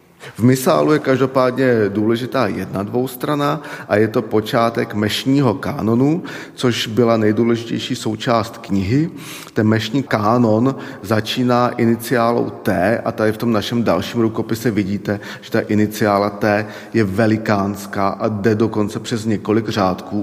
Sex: male